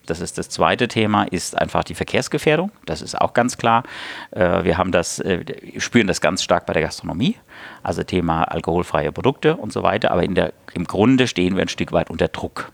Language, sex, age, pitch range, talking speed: German, male, 50-69, 90-130 Hz, 205 wpm